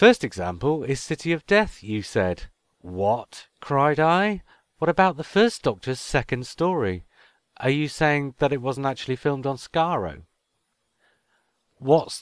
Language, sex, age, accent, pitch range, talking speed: English, male, 40-59, British, 95-140 Hz, 140 wpm